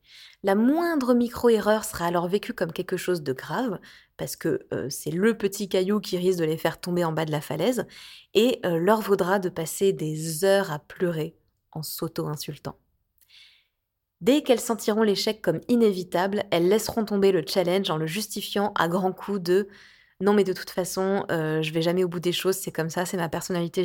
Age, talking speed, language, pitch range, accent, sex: 20-39, 195 wpm, French, 165-210 Hz, French, female